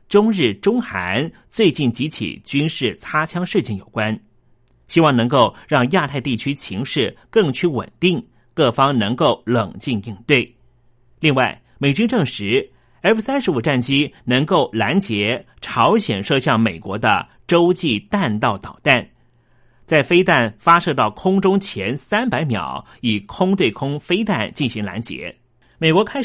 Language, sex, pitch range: Chinese, male, 120-175 Hz